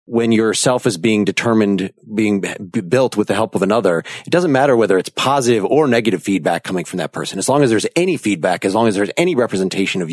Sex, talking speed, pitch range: male, 230 wpm, 105-125 Hz